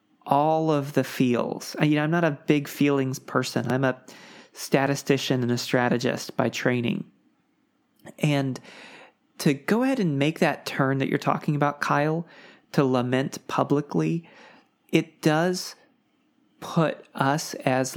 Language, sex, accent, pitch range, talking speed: English, male, American, 130-160 Hz, 135 wpm